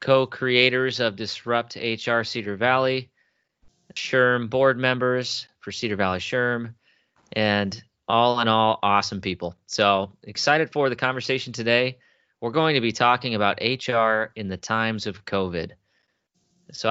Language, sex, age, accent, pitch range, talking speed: English, male, 30-49, American, 95-120 Hz, 135 wpm